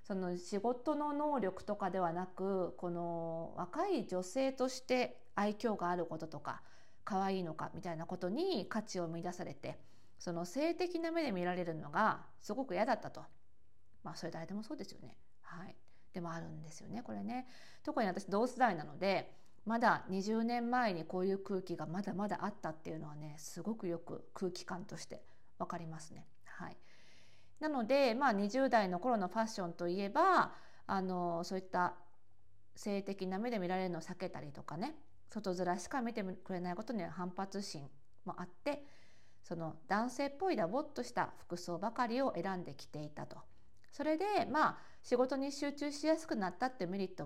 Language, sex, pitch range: Japanese, female, 175-260 Hz